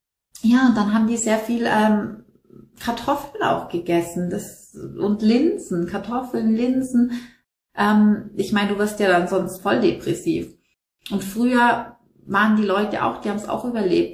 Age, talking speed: 30-49, 155 wpm